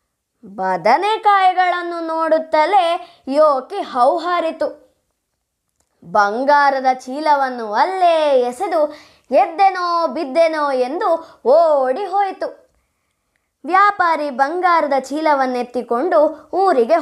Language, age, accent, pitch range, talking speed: Kannada, 20-39, native, 260-345 Hz, 60 wpm